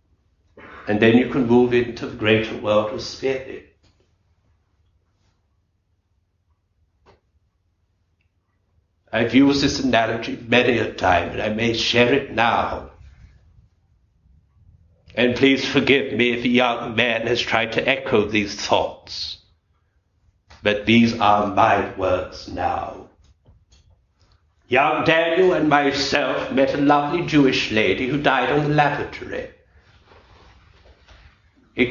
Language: English